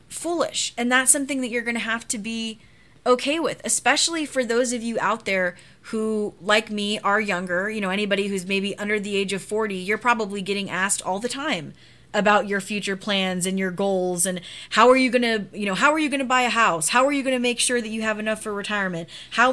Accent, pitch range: American, 195-240 Hz